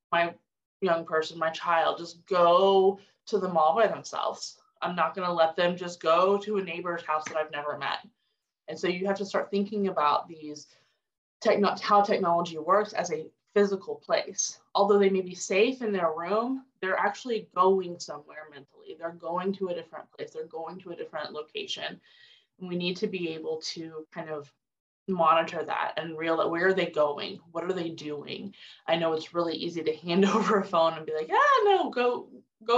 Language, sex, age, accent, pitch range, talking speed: English, female, 20-39, American, 160-205 Hz, 195 wpm